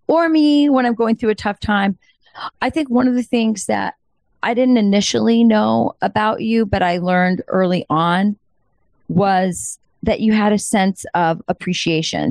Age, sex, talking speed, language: 40-59, female, 170 wpm, English